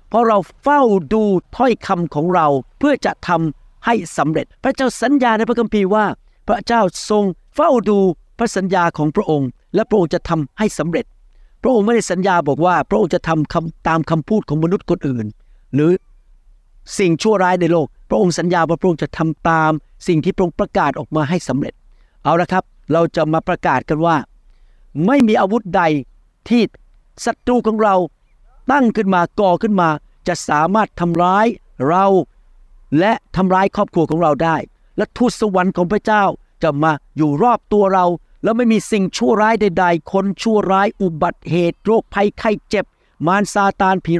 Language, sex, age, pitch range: Thai, male, 60-79, 165-215 Hz